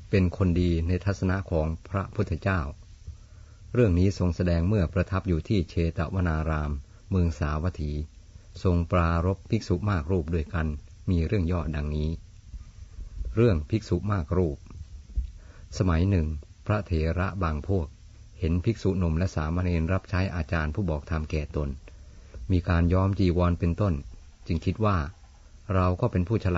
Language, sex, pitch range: Thai, male, 80-100 Hz